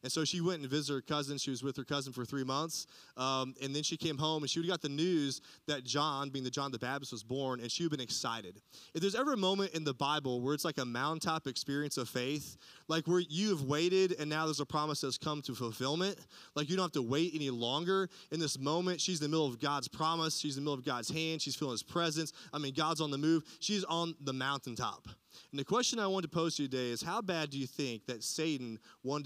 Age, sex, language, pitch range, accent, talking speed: 20-39, male, English, 135-170 Hz, American, 265 wpm